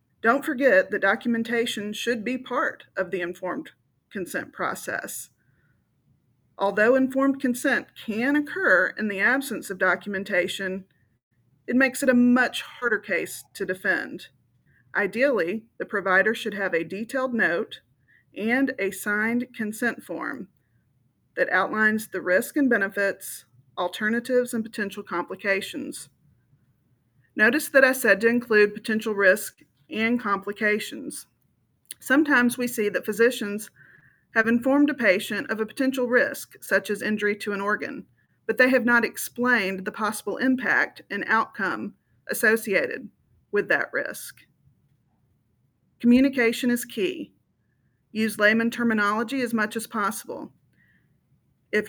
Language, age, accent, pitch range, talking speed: English, 40-59, American, 195-245 Hz, 125 wpm